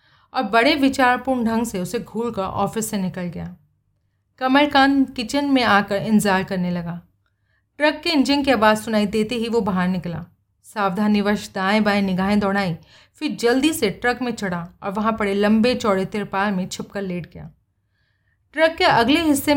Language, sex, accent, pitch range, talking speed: Hindi, female, native, 185-245 Hz, 170 wpm